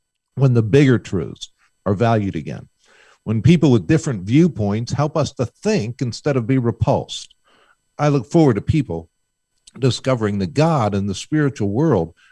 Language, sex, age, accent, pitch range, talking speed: English, male, 50-69, American, 100-140 Hz, 155 wpm